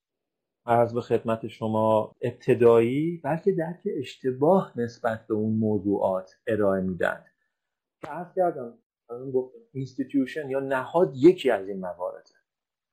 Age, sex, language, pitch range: 40-59, male, Persian, 115-170 Hz